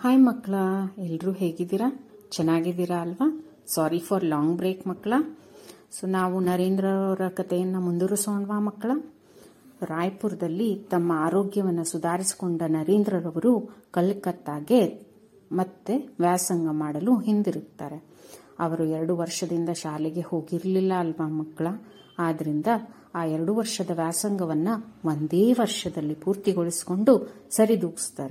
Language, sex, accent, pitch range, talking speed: English, female, Indian, 165-210 Hz, 80 wpm